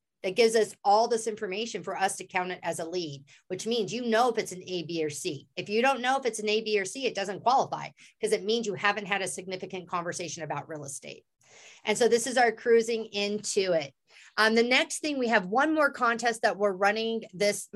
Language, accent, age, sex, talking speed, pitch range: English, American, 40-59, female, 245 wpm, 180-230 Hz